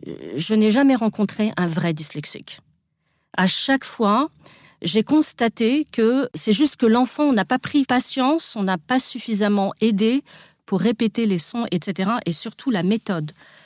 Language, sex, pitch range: French, female, 185-250 Hz